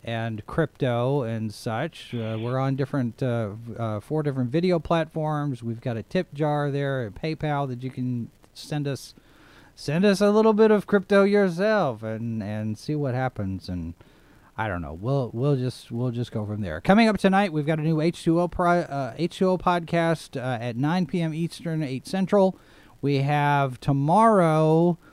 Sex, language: male, English